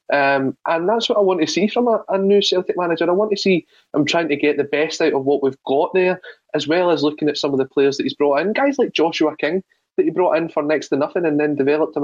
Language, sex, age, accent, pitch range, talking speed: English, male, 20-39, British, 140-190 Hz, 295 wpm